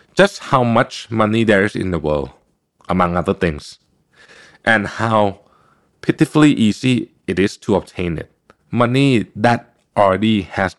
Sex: male